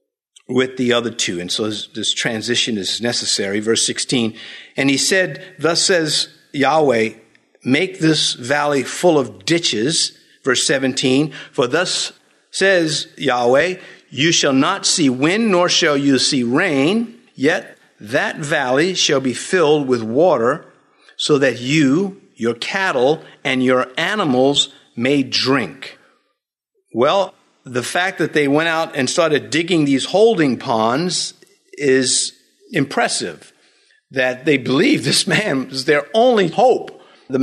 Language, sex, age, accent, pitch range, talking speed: English, male, 50-69, American, 130-190 Hz, 135 wpm